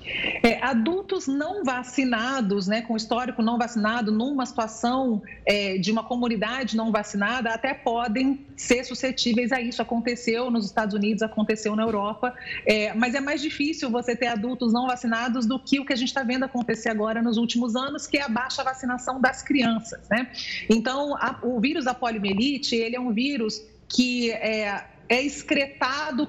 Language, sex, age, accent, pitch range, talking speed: Portuguese, female, 40-59, Brazilian, 230-275 Hz, 170 wpm